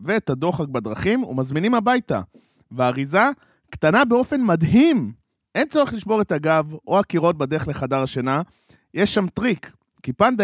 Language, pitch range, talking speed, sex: Hebrew, 150-235 Hz, 140 wpm, male